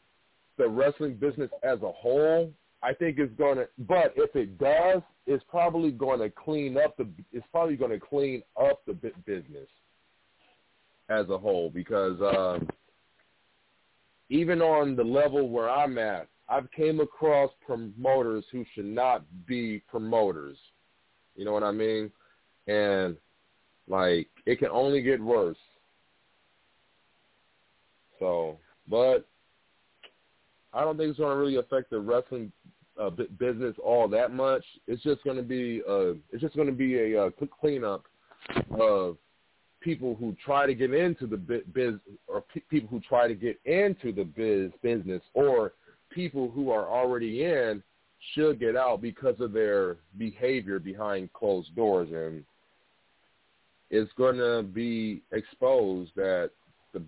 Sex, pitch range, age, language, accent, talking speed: male, 110-155 Hz, 40-59, English, American, 145 wpm